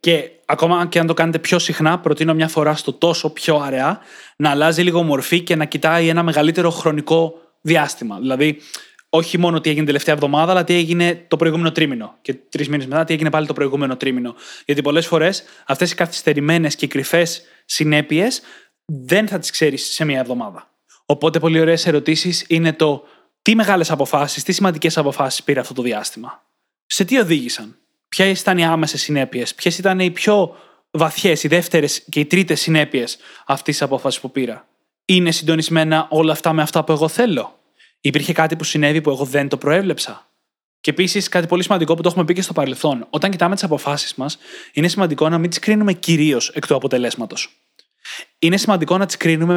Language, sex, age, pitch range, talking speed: Greek, male, 20-39, 150-175 Hz, 190 wpm